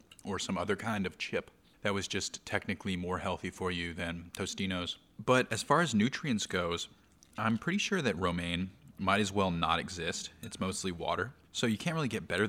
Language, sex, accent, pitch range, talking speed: English, male, American, 90-110 Hz, 195 wpm